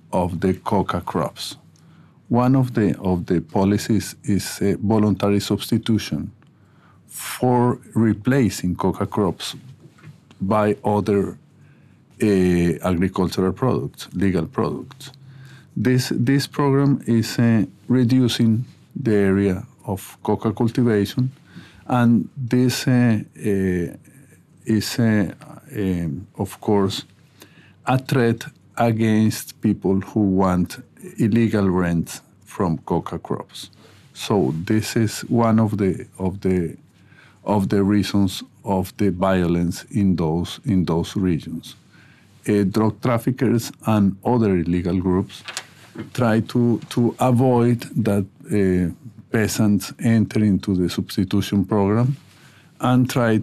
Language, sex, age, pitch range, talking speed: English, male, 50-69, 95-125 Hz, 110 wpm